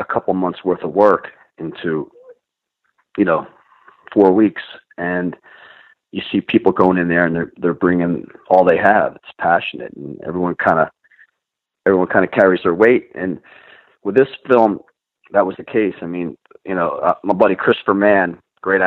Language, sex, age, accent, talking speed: English, male, 40-59, American, 175 wpm